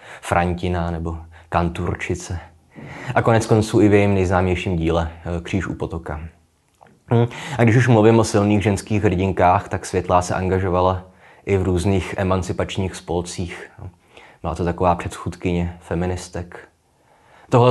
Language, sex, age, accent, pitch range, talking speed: Czech, male, 20-39, native, 85-105 Hz, 125 wpm